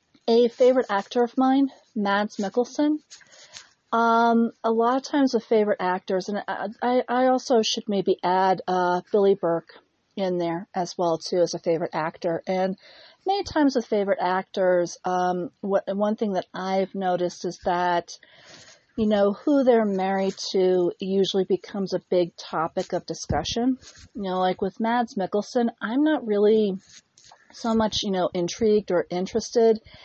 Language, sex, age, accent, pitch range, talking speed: English, female, 40-59, American, 180-225 Hz, 155 wpm